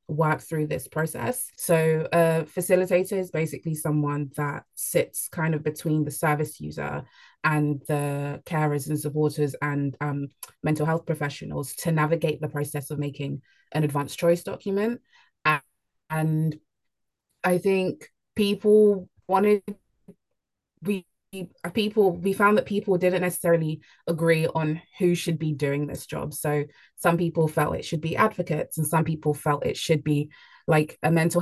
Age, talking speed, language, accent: 20-39, 150 wpm, English, British